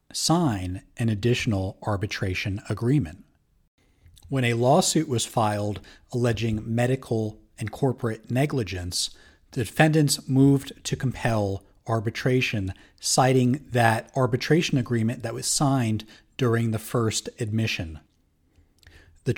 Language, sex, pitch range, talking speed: English, male, 105-130 Hz, 100 wpm